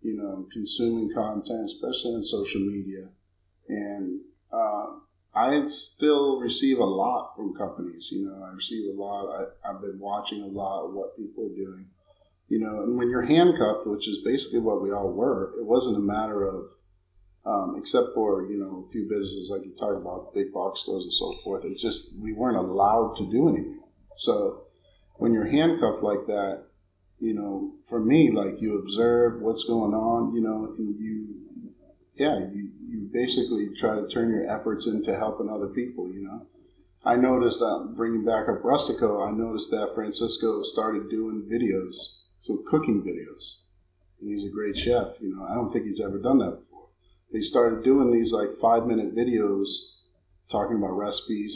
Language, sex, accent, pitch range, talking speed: English, male, American, 100-120 Hz, 180 wpm